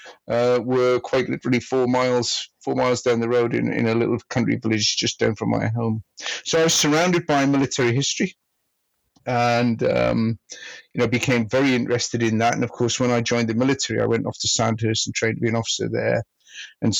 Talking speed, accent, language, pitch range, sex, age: 210 wpm, British, English, 110-125 Hz, male, 50-69